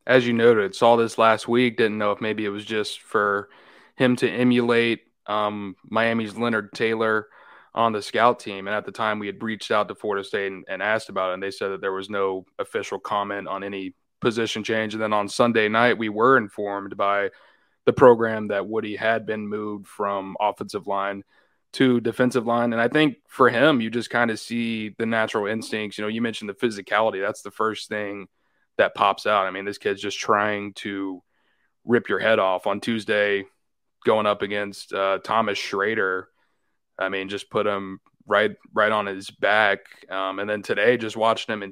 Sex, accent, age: male, American, 20-39